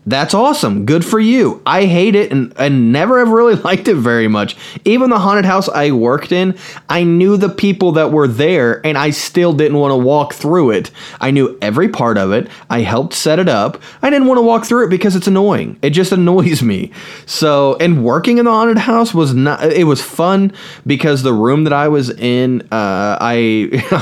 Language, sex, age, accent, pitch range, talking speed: English, male, 20-39, American, 120-170 Hz, 210 wpm